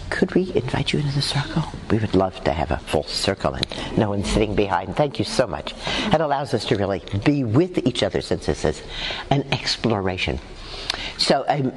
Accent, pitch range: American, 105-150 Hz